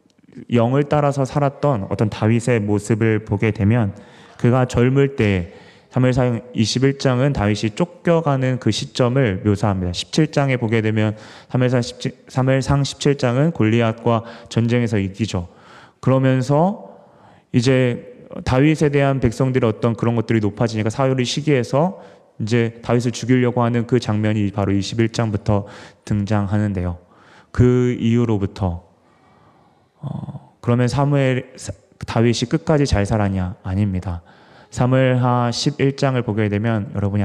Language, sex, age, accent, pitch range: Korean, male, 20-39, native, 105-130 Hz